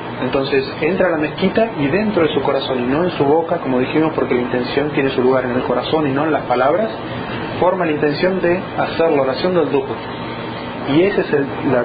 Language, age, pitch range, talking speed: Spanish, 30-49, 135-175 Hz, 230 wpm